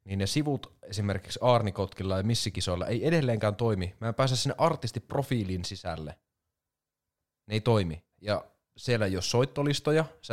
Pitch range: 90-120 Hz